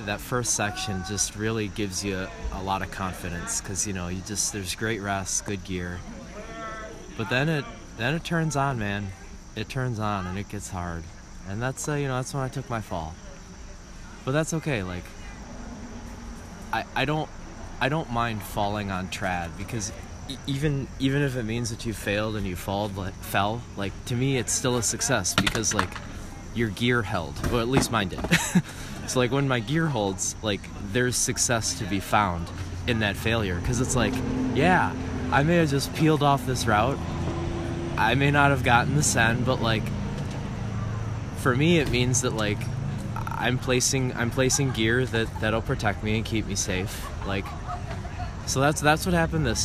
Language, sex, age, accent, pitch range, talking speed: English, male, 20-39, American, 95-125 Hz, 185 wpm